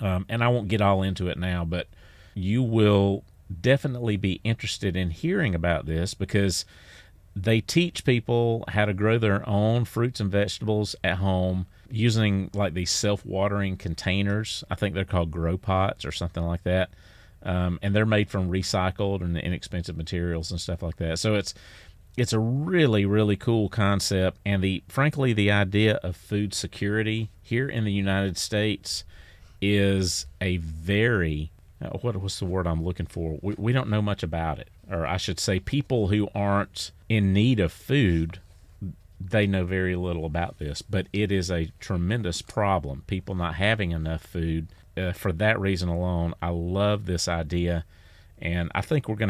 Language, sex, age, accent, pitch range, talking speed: English, male, 40-59, American, 85-105 Hz, 170 wpm